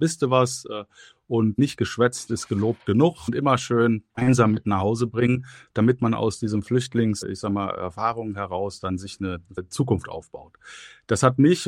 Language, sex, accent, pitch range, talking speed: German, male, German, 110-130 Hz, 175 wpm